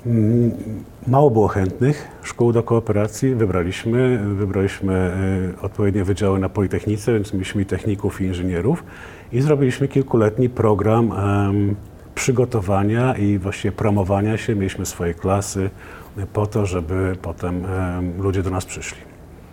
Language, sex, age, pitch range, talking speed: Polish, male, 40-59, 95-115 Hz, 115 wpm